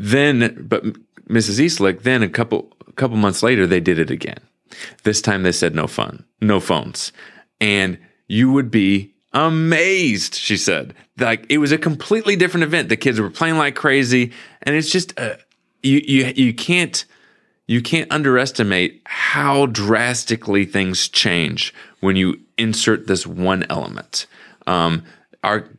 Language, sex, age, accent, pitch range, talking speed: English, male, 30-49, American, 100-135 Hz, 155 wpm